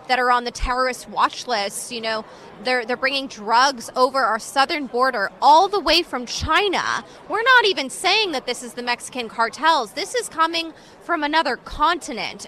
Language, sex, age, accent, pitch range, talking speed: English, female, 20-39, American, 230-320 Hz, 185 wpm